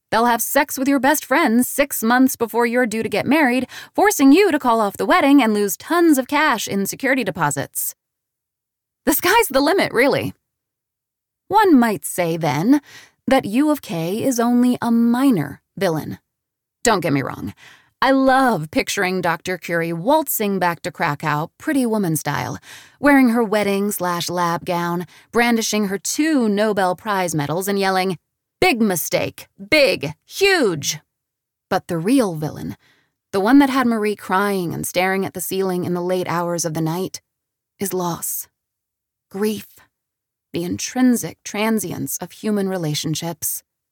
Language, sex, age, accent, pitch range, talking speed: English, female, 30-49, American, 175-265 Hz, 150 wpm